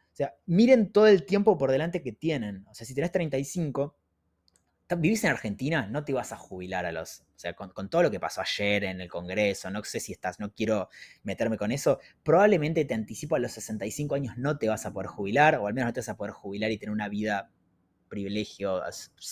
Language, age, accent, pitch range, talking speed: Spanish, 20-39, Argentinian, 105-170 Hz, 225 wpm